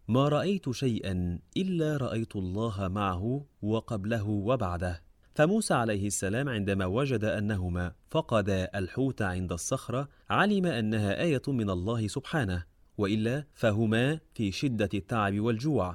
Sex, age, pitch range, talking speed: male, 30-49, 95-130 Hz, 115 wpm